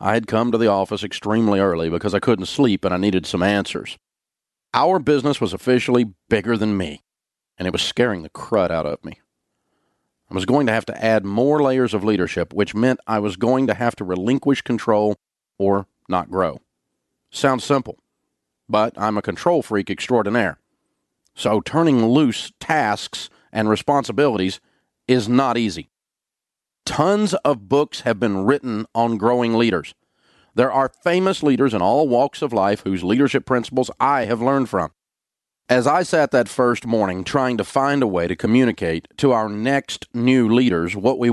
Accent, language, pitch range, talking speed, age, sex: American, English, 100-130 Hz, 175 wpm, 40-59, male